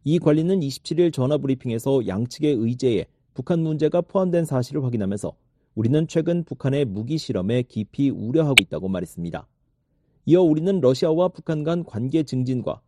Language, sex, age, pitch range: Korean, male, 40-59, 115-160 Hz